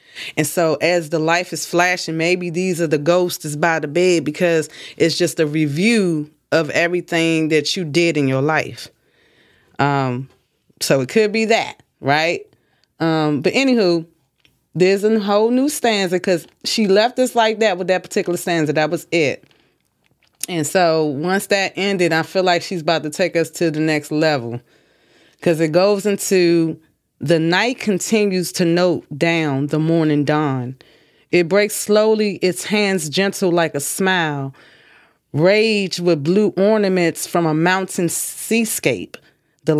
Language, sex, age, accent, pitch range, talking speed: English, female, 20-39, American, 155-195 Hz, 155 wpm